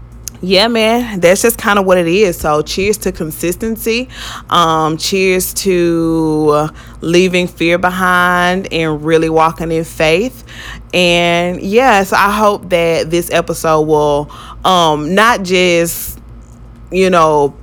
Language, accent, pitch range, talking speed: English, American, 150-180 Hz, 125 wpm